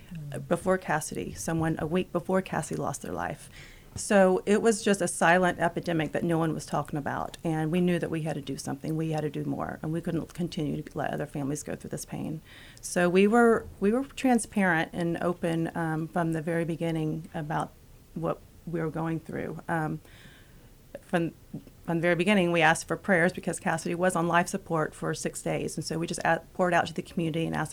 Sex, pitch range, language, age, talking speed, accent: female, 155-175 Hz, English, 40-59, 215 wpm, American